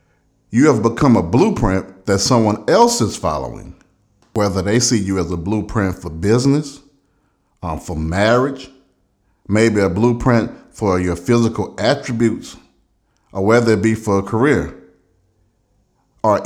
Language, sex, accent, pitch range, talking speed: English, male, American, 90-120 Hz, 135 wpm